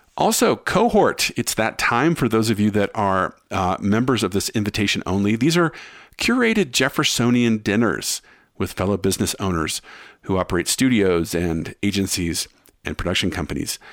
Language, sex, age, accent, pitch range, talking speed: English, male, 50-69, American, 90-115 Hz, 145 wpm